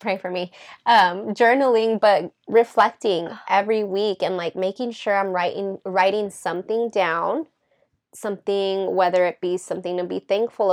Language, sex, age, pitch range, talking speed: English, female, 20-39, 175-200 Hz, 145 wpm